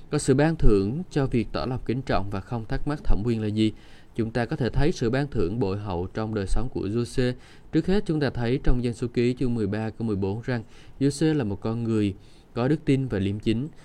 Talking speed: 250 wpm